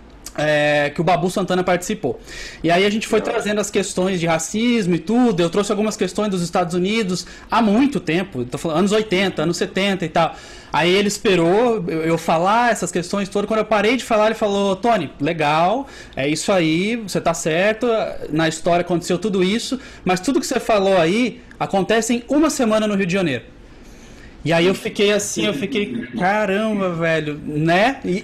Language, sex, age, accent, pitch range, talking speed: Portuguese, male, 20-39, Brazilian, 180-225 Hz, 190 wpm